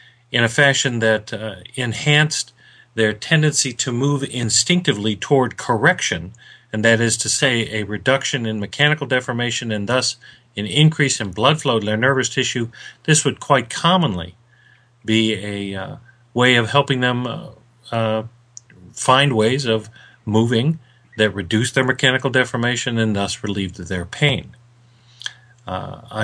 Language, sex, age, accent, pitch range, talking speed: English, male, 40-59, American, 110-135 Hz, 140 wpm